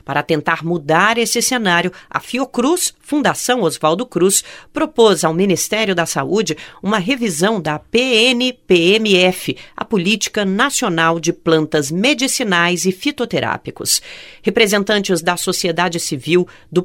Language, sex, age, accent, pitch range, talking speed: Portuguese, female, 40-59, Brazilian, 170-230 Hz, 115 wpm